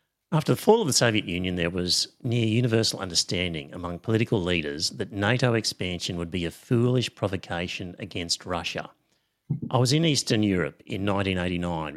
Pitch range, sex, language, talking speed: 95-125 Hz, male, English, 160 wpm